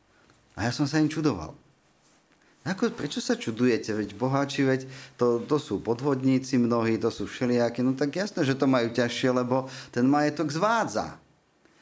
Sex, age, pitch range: male, 50-69, 105-130 Hz